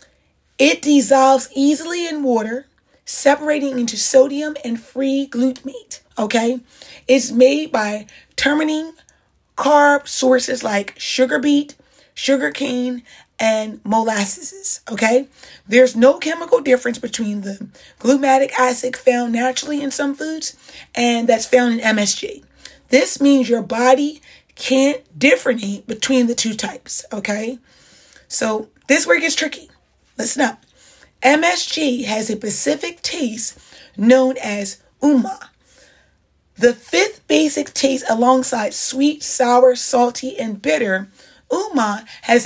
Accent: American